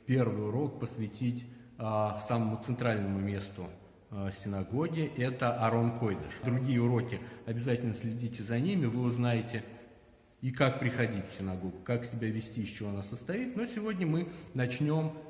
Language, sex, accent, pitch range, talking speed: Russian, male, native, 115-135 Hz, 135 wpm